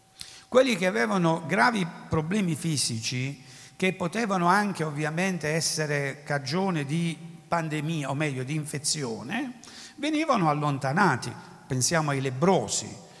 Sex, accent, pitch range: male, native, 150-210 Hz